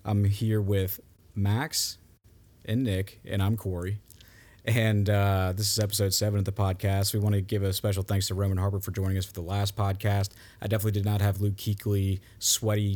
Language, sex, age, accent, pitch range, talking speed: English, male, 30-49, American, 100-110 Hz, 200 wpm